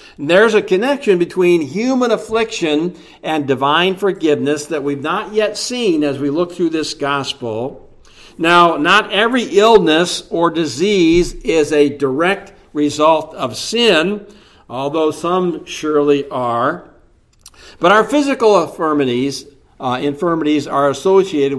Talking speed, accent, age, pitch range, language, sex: 120 wpm, American, 60-79, 140-190 Hz, English, male